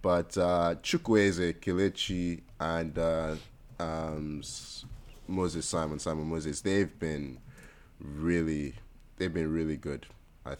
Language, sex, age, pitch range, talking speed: English, male, 30-49, 80-95 Hz, 110 wpm